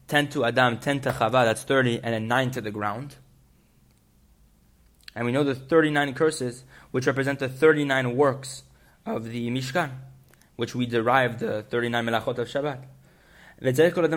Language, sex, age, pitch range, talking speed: English, male, 20-39, 120-155 Hz, 140 wpm